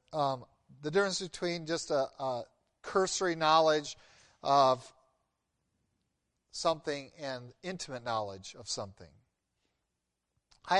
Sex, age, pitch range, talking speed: male, 40-59, 105-155 Hz, 95 wpm